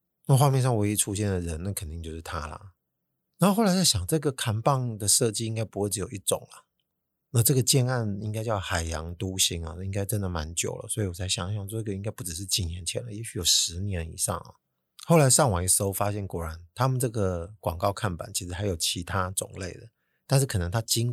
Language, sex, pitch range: Chinese, male, 90-110 Hz